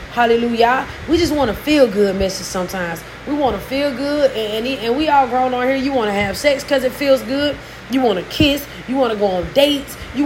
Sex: female